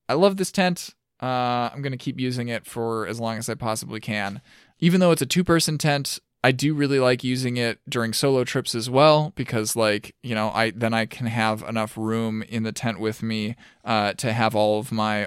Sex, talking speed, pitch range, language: male, 220 wpm, 110-145 Hz, English